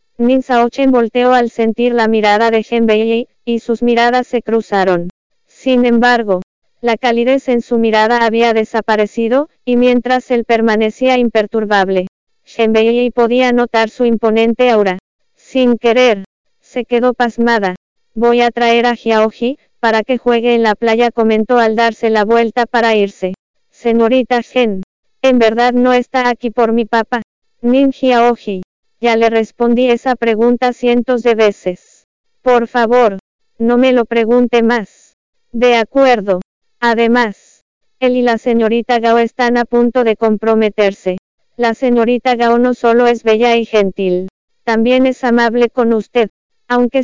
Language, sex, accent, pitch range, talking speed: English, female, American, 225-245 Hz, 145 wpm